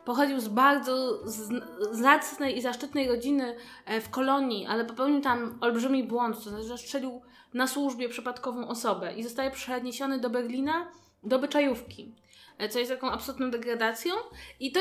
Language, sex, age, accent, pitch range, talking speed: Polish, female, 20-39, native, 240-285 Hz, 145 wpm